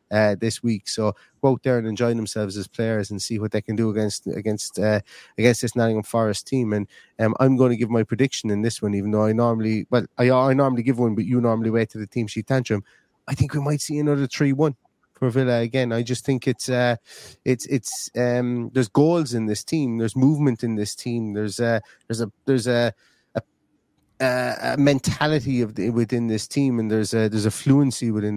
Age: 30-49